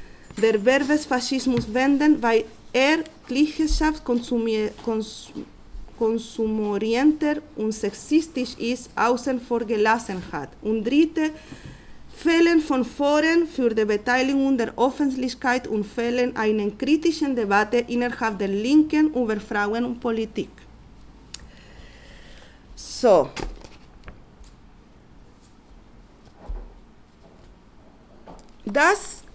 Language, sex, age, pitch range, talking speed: German, female, 40-59, 230-295 Hz, 80 wpm